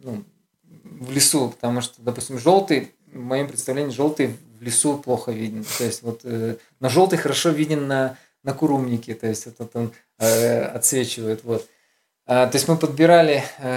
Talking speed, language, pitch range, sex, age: 155 wpm, Russian, 120-155 Hz, male, 20-39